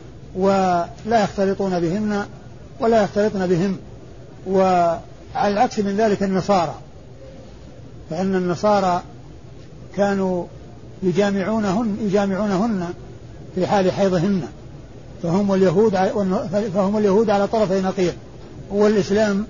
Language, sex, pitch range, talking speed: Arabic, male, 160-205 Hz, 85 wpm